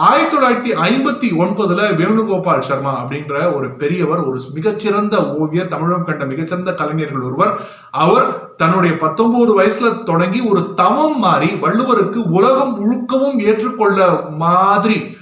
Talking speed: 115 wpm